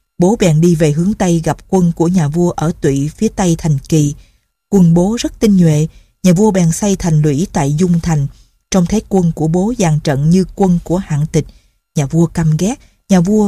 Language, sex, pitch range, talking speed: Vietnamese, female, 165-200 Hz, 220 wpm